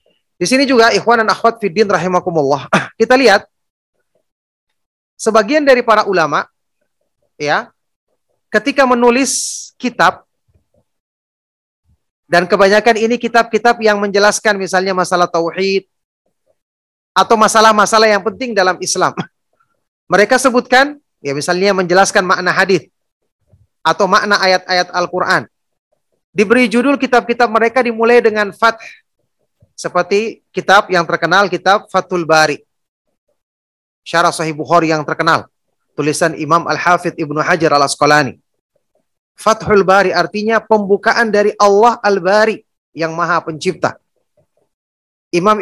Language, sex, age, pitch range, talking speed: Indonesian, male, 30-49, 175-225 Hz, 105 wpm